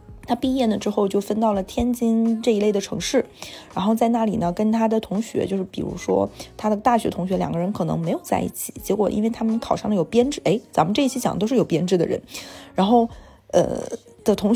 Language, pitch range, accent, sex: Chinese, 195-240 Hz, native, female